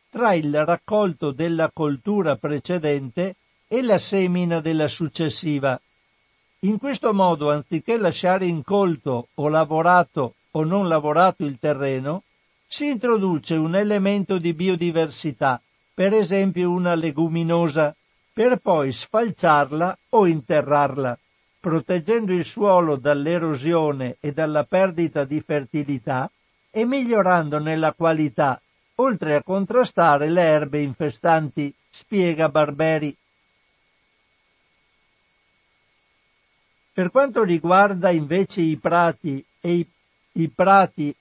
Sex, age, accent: male, 60-79, native